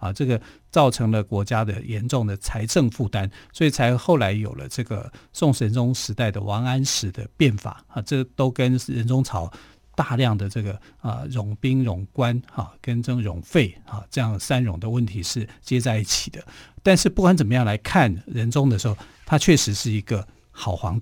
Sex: male